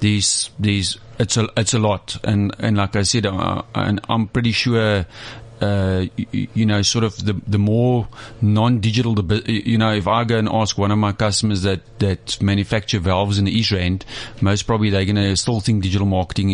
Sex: male